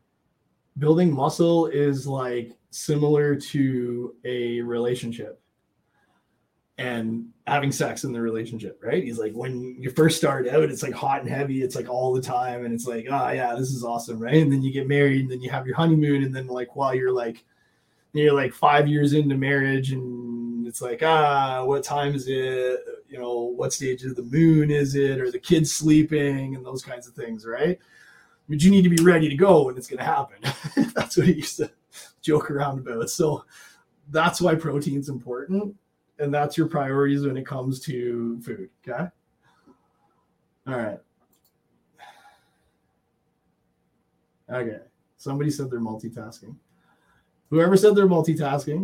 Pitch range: 125-155 Hz